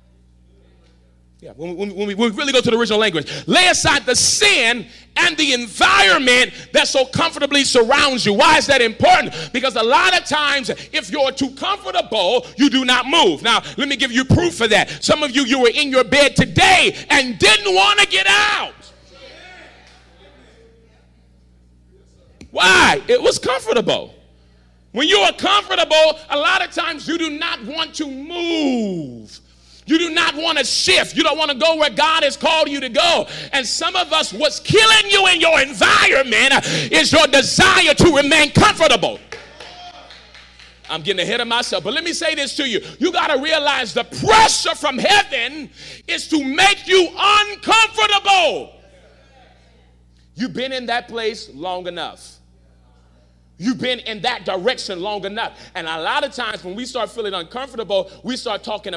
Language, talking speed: English, 170 wpm